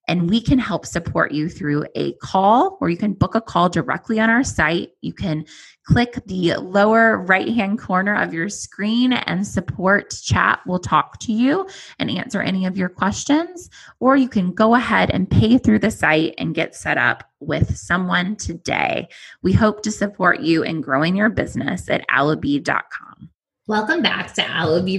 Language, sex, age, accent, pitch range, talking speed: English, female, 20-39, American, 155-205 Hz, 180 wpm